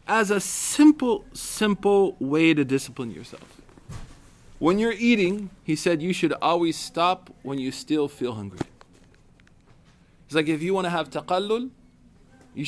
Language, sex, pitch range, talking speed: English, male, 130-195 Hz, 145 wpm